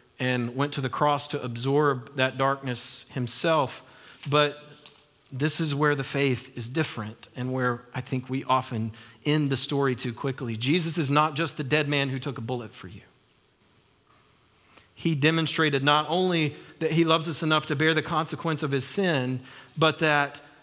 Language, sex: English, male